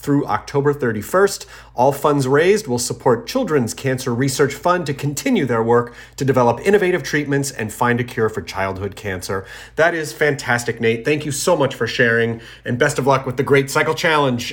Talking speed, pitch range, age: 190 wpm, 125-150 Hz, 30-49